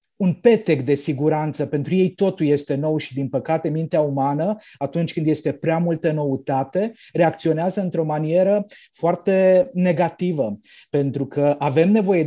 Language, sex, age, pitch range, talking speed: Romanian, male, 30-49, 145-180 Hz, 140 wpm